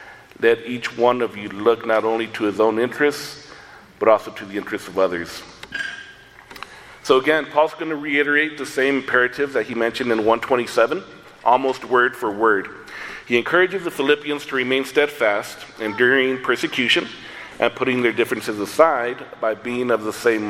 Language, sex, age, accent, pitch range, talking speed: English, male, 40-59, American, 110-130 Hz, 165 wpm